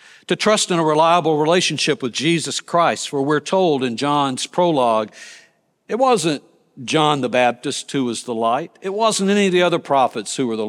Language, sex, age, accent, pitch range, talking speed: English, male, 60-79, American, 130-175 Hz, 190 wpm